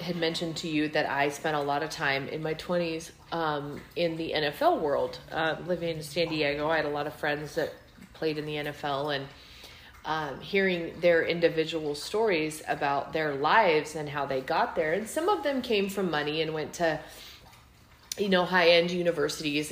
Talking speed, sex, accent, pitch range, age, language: 195 wpm, female, American, 150-185 Hz, 30-49, English